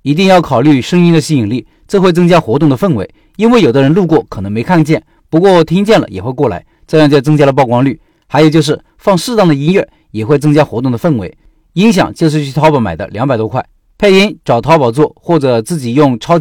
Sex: male